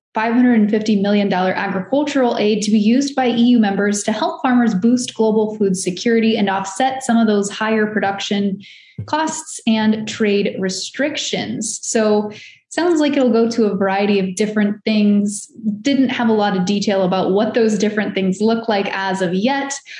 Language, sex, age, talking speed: English, female, 20-39, 160 wpm